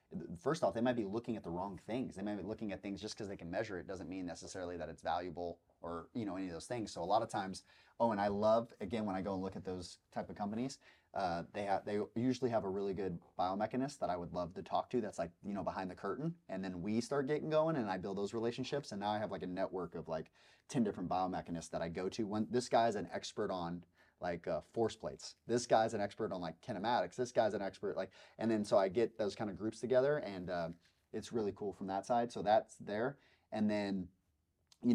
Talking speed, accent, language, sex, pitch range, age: 265 wpm, American, English, male, 90-110 Hz, 30-49